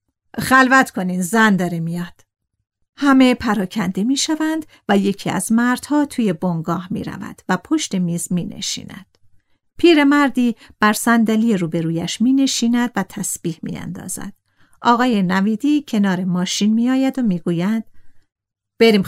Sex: female